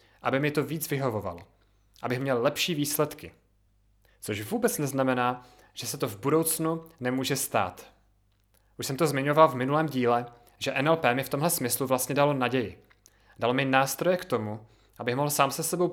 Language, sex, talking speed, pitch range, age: Czech, male, 170 wpm, 100-145 Hz, 30-49